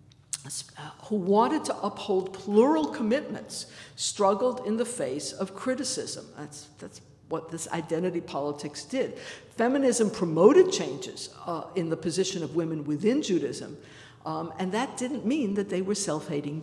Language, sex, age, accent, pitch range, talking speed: English, female, 60-79, American, 165-235 Hz, 140 wpm